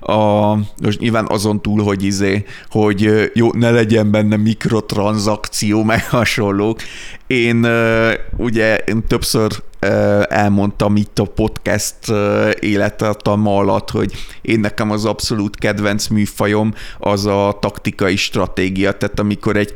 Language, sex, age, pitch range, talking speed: Hungarian, male, 30-49, 100-110 Hz, 115 wpm